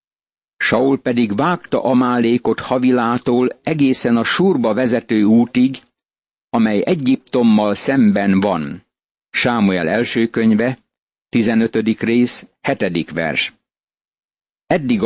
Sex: male